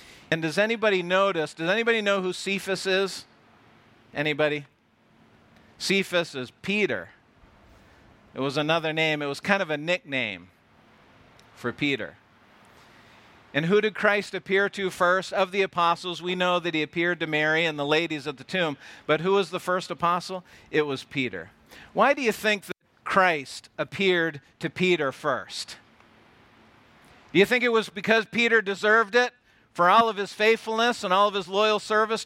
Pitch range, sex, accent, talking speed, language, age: 150-200 Hz, male, American, 165 wpm, English, 50-69